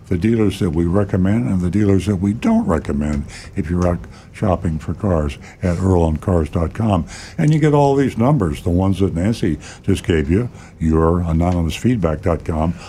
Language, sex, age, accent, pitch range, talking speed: English, male, 60-79, American, 85-105 Hz, 160 wpm